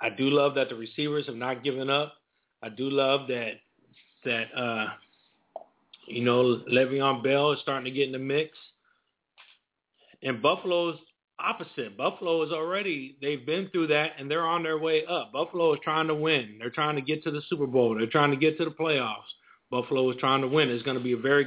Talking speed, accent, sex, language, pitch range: 205 wpm, American, male, English, 125-165 Hz